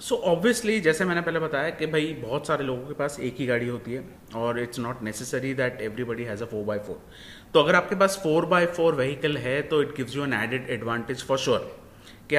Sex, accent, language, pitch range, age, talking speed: male, Indian, English, 125-170 Hz, 30-49, 200 wpm